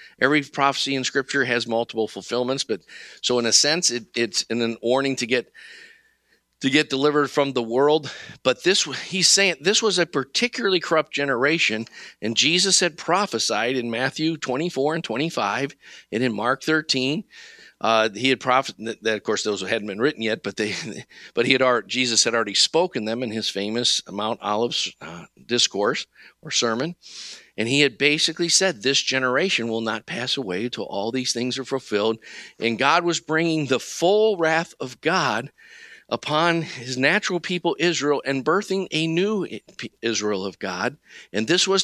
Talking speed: 180 wpm